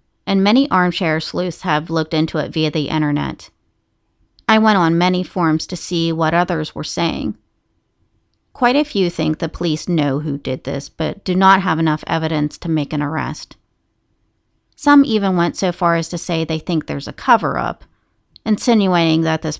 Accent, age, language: American, 40-59, English